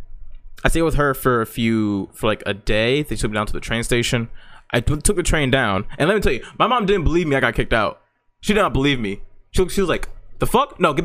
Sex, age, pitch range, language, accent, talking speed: male, 20-39, 105-140 Hz, English, American, 275 wpm